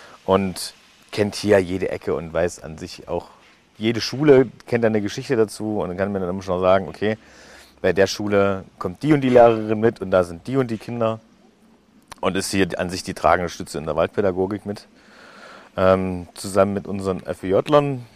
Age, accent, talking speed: 40-59, German, 195 wpm